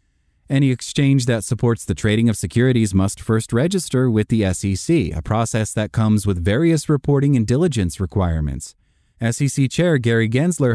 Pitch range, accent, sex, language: 100-130 Hz, American, male, English